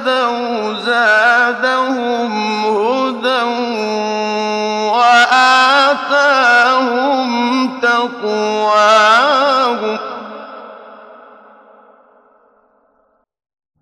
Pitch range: 225-260 Hz